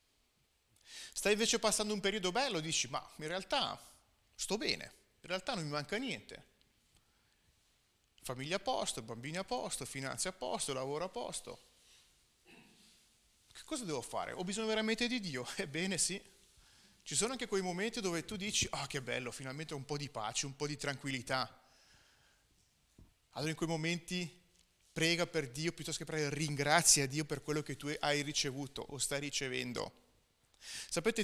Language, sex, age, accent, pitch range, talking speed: Italian, male, 30-49, native, 135-180 Hz, 165 wpm